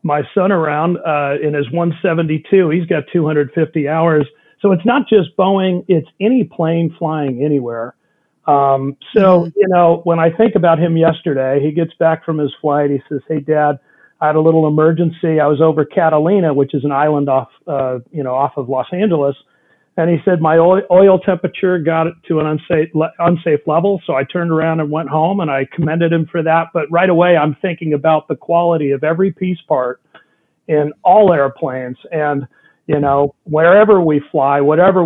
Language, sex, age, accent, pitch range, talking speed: English, male, 40-59, American, 145-175 Hz, 190 wpm